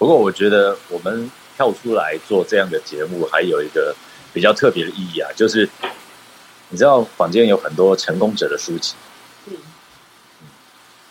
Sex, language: male, Chinese